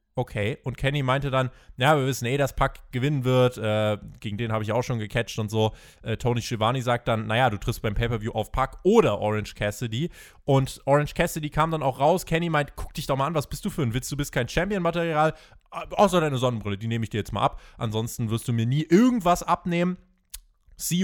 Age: 20-39